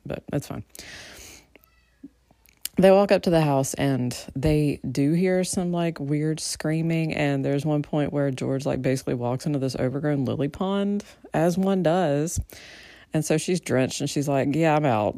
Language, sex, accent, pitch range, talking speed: English, female, American, 135-180 Hz, 175 wpm